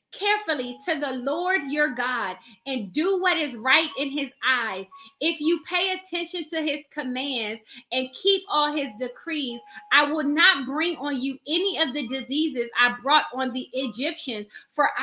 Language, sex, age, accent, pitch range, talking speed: English, female, 20-39, American, 255-335 Hz, 170 wpm